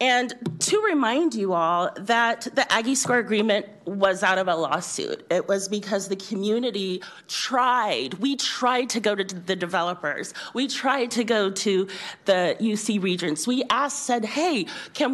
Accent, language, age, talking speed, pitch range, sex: American, English, 30-49, 165 wpm, 180-245 Hz, female